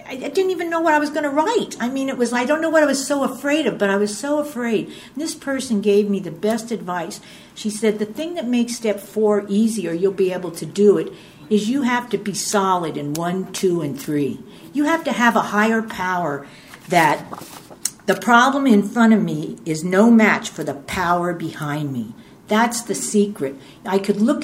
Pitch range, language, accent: 180-240 Hz, English, American